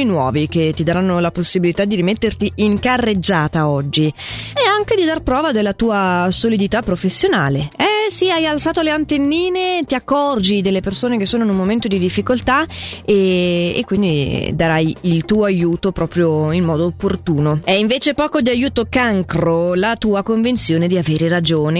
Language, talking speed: Italian, 165 wpm